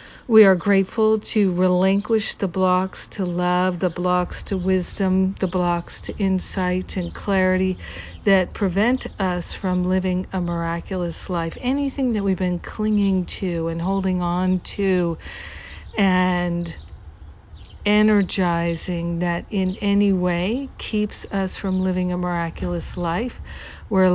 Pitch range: 175-195 Hz